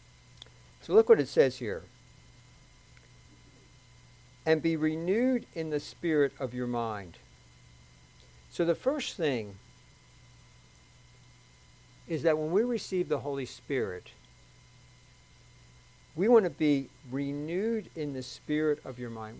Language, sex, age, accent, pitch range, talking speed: English, male, 60-79, American, 125-150 Hz, 120 wpm